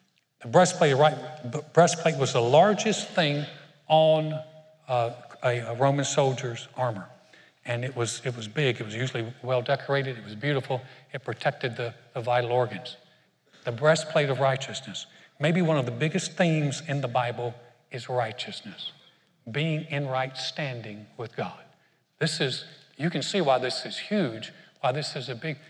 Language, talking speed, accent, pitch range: English, 165 wpm, American, 125-155 Hz